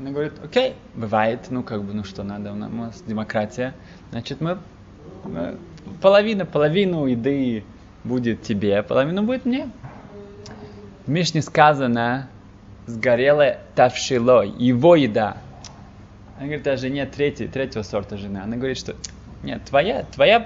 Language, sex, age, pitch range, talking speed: Russian, male, 20-39, 105-150 Hz, 130 wpm